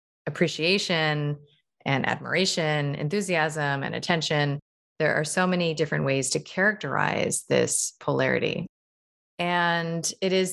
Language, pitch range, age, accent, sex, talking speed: English, 140-170 Hz, 30-49, American, female, 110 wpm